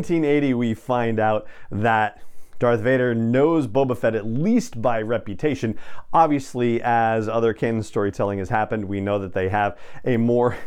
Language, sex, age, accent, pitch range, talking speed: English, male, 40-59, American, 110-155 Hz, 170 wpm